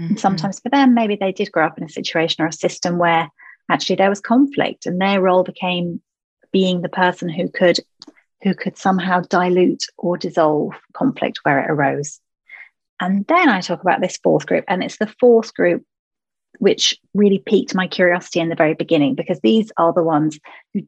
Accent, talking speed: British, 195 wpm